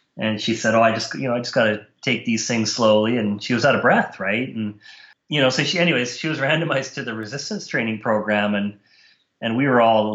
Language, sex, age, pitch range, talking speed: English, male, 30-49, 115-135 Hz, 255 wpm